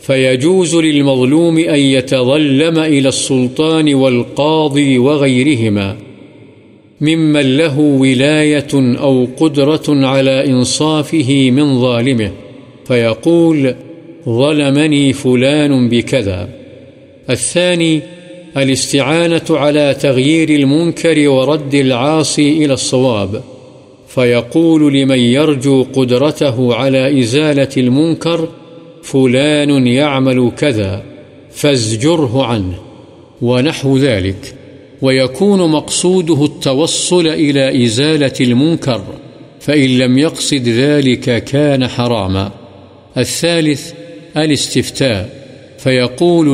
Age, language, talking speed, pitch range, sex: 50-69, Urdu, 75 wpm, 125-150 Hz, male